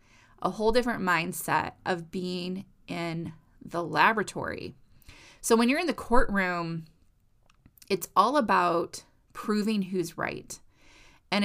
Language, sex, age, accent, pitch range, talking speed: English, female, 20-39, American, 170-220 Hz, 115 wpm